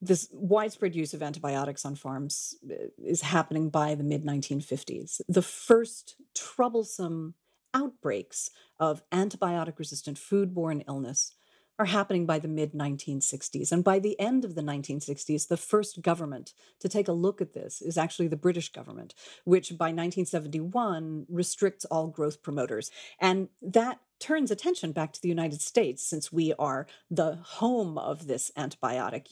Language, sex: English, female